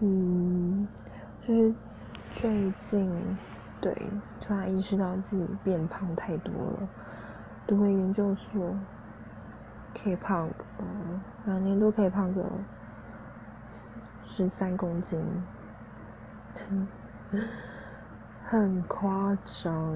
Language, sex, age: English, female, 20-39